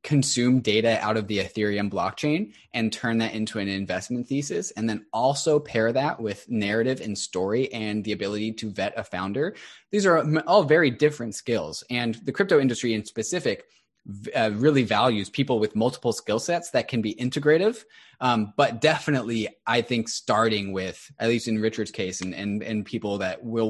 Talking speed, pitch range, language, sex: 180 wpm, 105-140 Hz, English, male